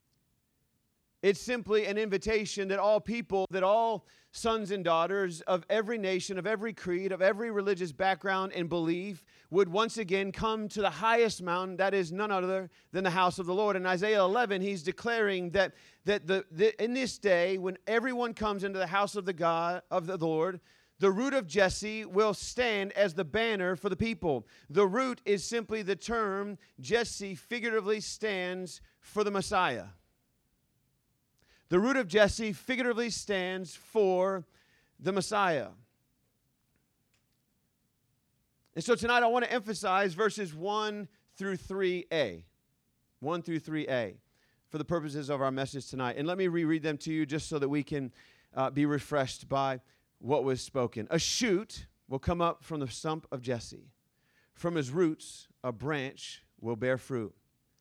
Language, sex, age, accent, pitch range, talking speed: English, male, 40-59, American, 155-210 Hz, 165 wpm